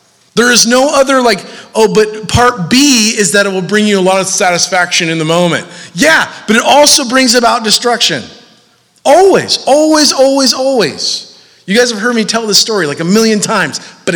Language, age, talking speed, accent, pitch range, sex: English, 30-49, 195 wpm, American, 145-215 Hz, male